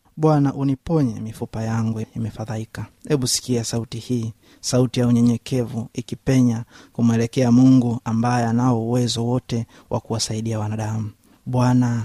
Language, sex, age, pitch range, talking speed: Swahili, male, 30-49, 110-125 Hz, 115 wpm